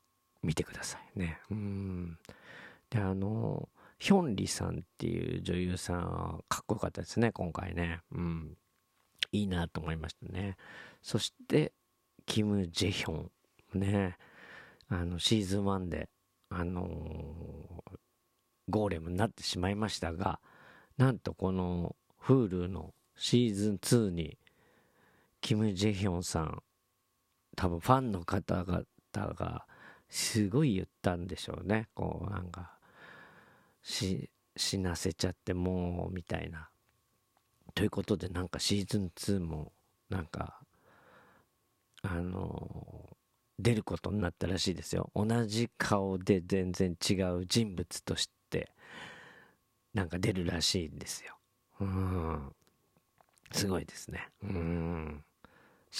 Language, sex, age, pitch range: Japanese, male, 40-59, 85-105 Hz